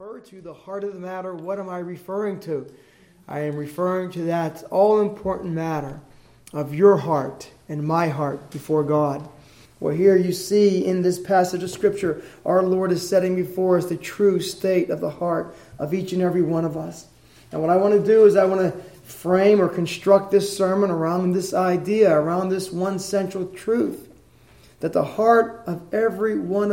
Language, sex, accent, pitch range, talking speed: English, male, American, 165-200 Hz, 185 wpm